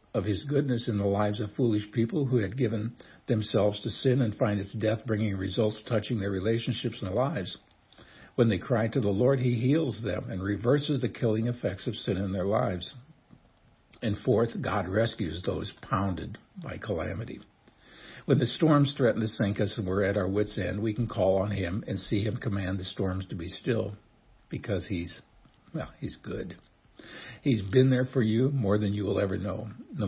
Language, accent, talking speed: English, American, 195 wpm